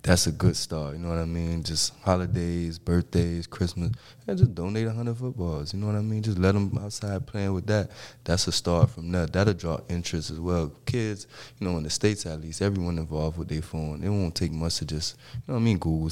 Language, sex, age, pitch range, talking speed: English, male, 20-39, 80-95 Hz, 245 wpm